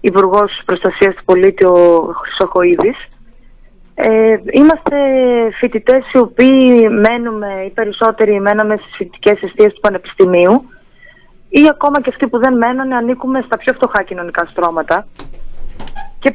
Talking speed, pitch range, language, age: 125 wpm, 200-255 Hz, Greek, 20-39